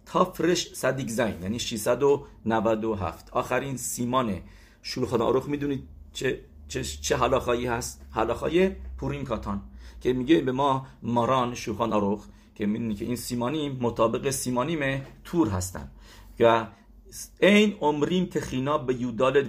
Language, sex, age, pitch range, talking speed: English, male, 50-69, 110-155 Hz, 125 wpm